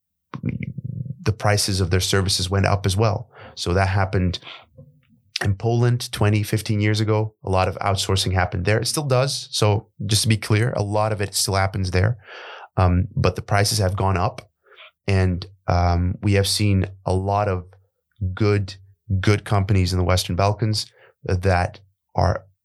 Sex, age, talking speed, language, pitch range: male, 30-49, 165 wpm, English, 95-110 Hz